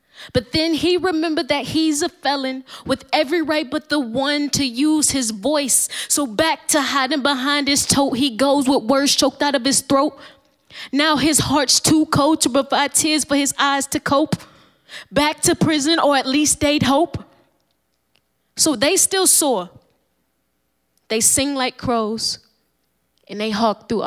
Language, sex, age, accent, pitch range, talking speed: English, female, 10-29, American, 195-280 Hz, 165 wpm